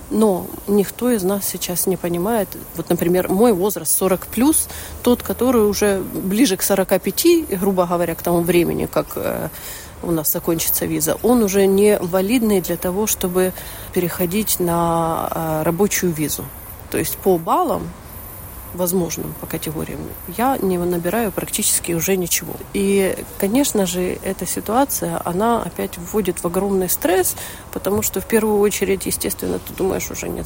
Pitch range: 175-205 Hz